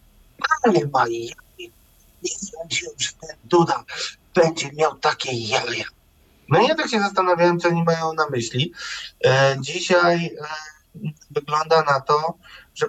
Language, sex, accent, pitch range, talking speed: Polish, male, native, 125-175 Hz, 135 wpm